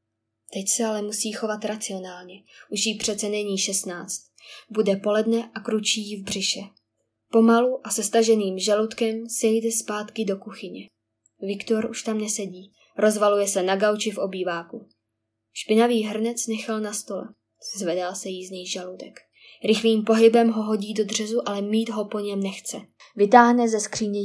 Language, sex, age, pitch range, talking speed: Czech, female, 20-39, 190-215 Hz, 155 wpm